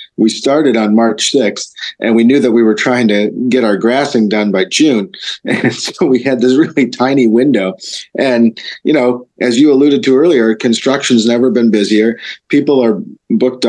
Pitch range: 105-125 Hz